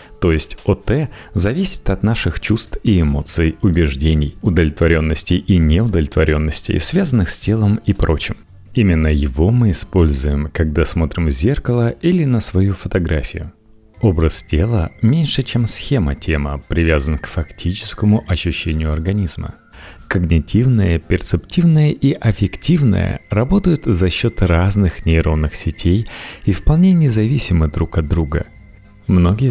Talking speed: 120 wpm